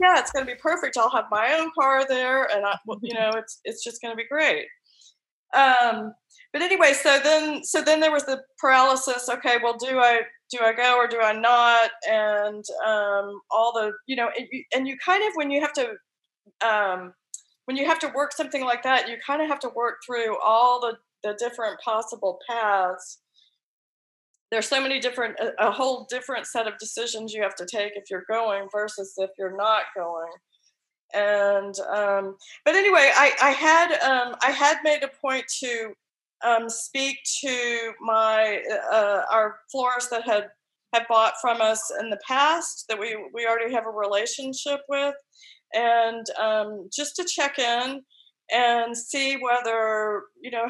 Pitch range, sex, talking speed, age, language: 220-270 Hz, female, 180 wpm, 20-39, English